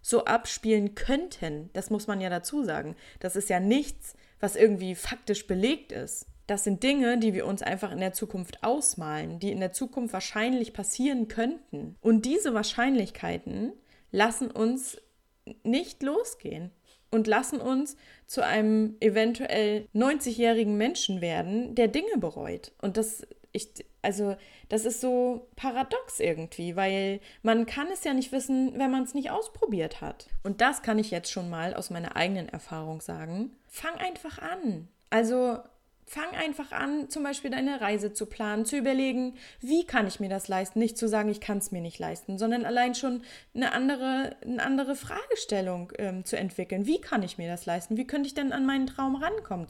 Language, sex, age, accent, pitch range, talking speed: German, female, 20-39, German, 205-270 Hz, 175 wpm